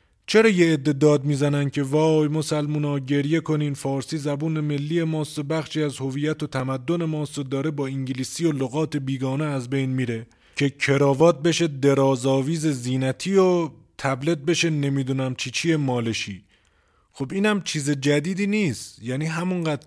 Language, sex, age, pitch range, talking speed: Persian, male, 30-49, 130-165 Hz, 140 wpm